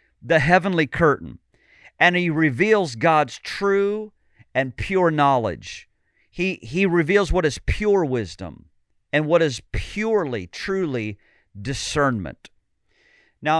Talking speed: 110 wpm